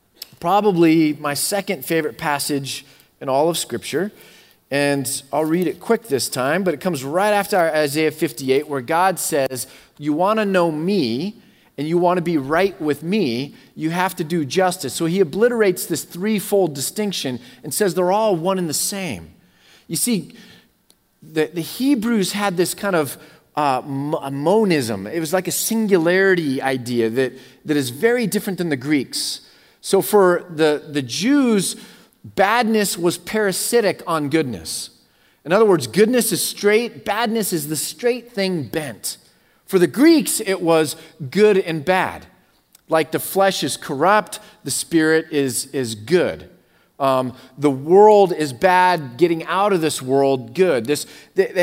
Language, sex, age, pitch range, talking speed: English, male, 30-49, 150-205 Hz, 160 wpm